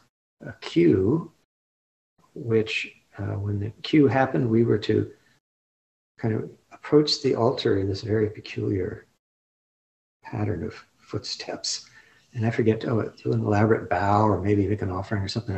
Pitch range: 105-120 Hz